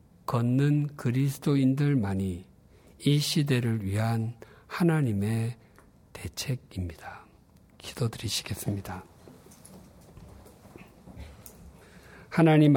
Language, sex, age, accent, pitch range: Korean, male, 50-69, native, 115-145 Hz